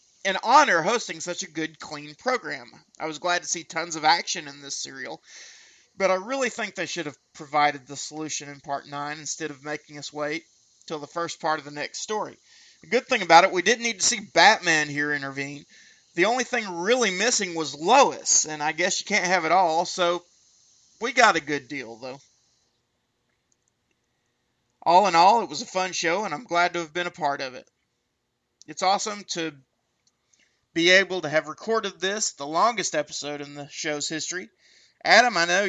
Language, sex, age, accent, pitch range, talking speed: English, male, 30-49, American, 150-195 Hz, 195 wpm